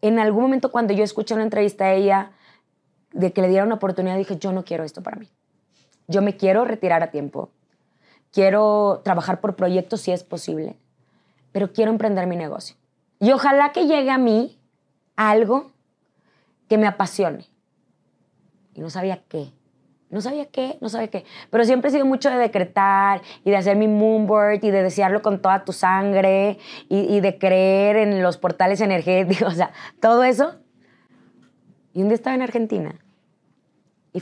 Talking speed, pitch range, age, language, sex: 175 wpm, 180-220 Hz, 20-39, English, female